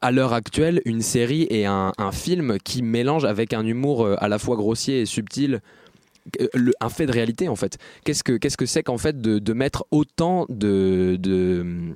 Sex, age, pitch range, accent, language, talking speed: male, 20-39, 105-130 Hz, French, French, 195 wpm